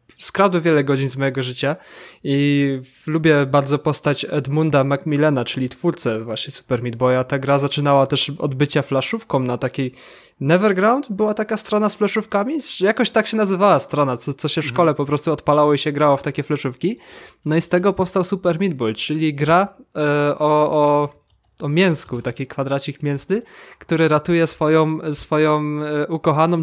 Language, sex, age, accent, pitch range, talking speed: Polish, male, 20-39, native, 135-165 Hz, 165 wpm